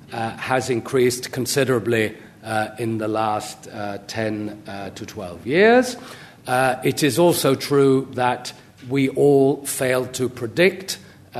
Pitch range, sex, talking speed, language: 115-140 Hz, male, 130 wpm, English